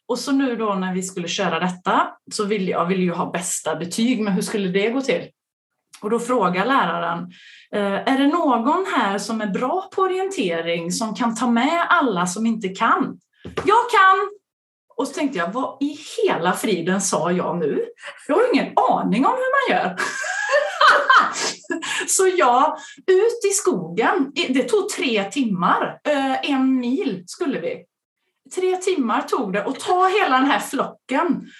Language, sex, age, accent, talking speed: Swedish, female, 30-49, native, 165 wpm